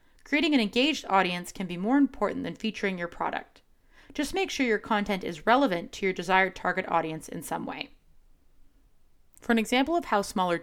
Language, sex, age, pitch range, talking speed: English, female, 20-39, 180-255 Hz, 185 wpm